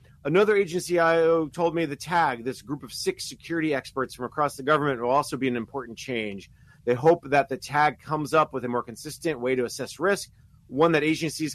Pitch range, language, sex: 130-165 Hz, English, male